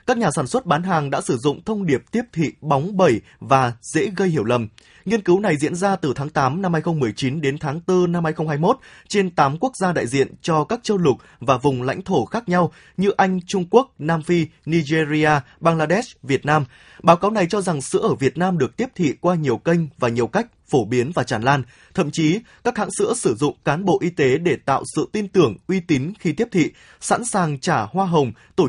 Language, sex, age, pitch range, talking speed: Vietnamese, male, 20-39, 140-190 Hz, 230 wpm